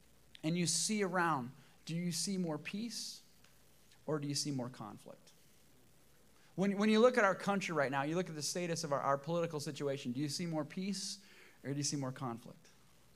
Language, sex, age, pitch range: English, male, 30-49, 140-195 Hz